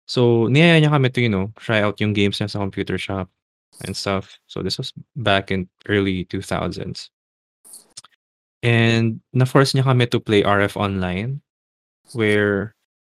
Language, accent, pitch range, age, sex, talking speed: Filipino, native, 95-115 Hz, 20-39, male, 155 wpm